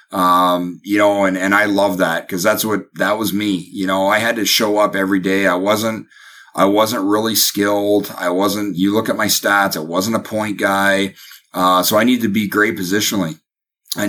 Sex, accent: male, American